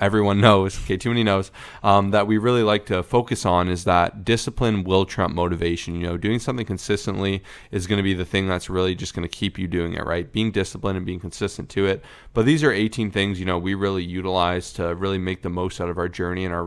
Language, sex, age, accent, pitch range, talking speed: English, male, 20-39, American, 90-105 Hz, 240 wpm